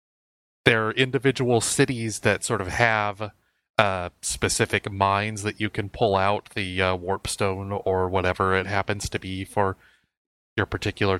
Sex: male